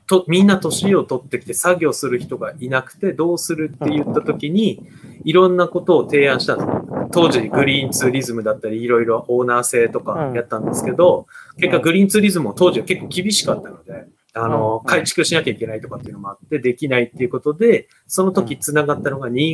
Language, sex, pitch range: Japanese, male, 130-185 Hz